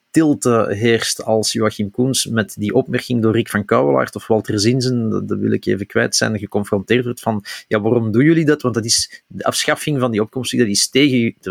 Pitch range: 105-125 Hz